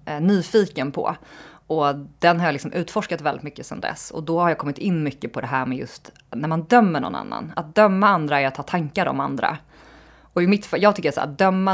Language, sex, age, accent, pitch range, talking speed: Swedish, female, 20-39, native, 140-175 Hz, 235 wpm